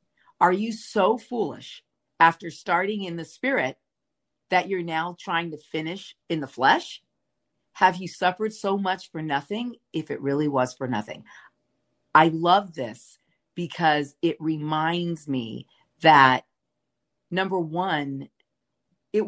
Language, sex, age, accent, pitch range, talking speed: English, female, 50-69, American, 150-190 Hz, 130 wpm